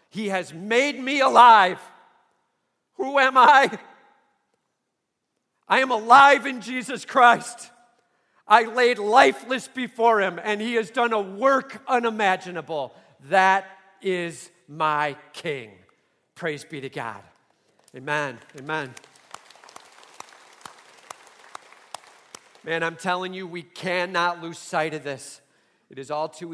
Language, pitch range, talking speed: English, 165-235 Hz, 115 wpm